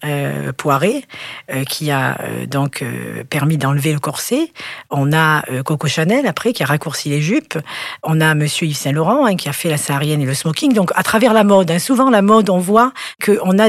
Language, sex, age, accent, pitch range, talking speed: French, female, 40-59, French, 170-230 Hz, 220 wpm